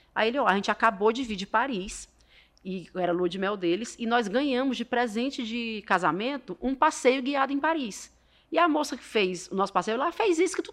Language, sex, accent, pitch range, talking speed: Portuguese, female, Brazilian, 190-275 Hz, 235 wpm